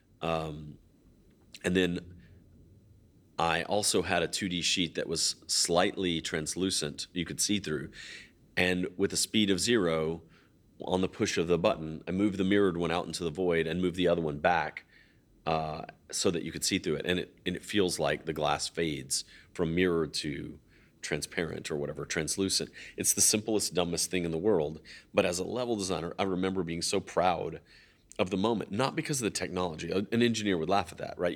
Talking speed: 190 wpm